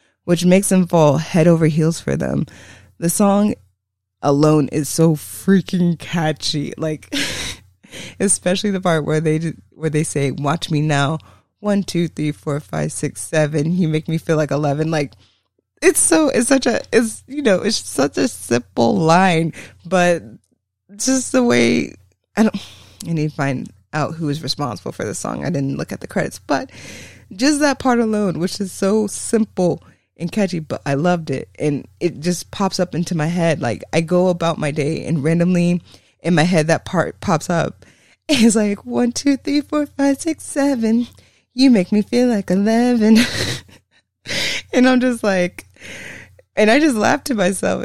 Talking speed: 180 wpm